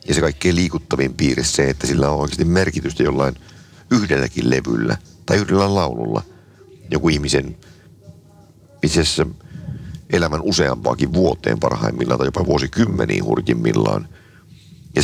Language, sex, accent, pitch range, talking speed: Finnish, male, native, 65-95 Hz, 120 wpm